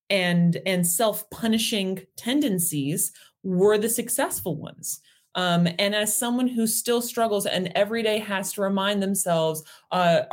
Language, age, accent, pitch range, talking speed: English, 30-49, American, 180-245 Hz, 140 wpm